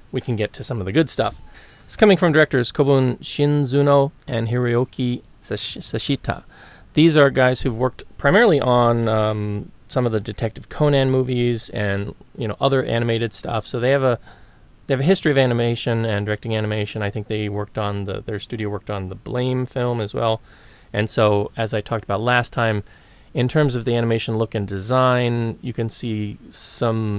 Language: English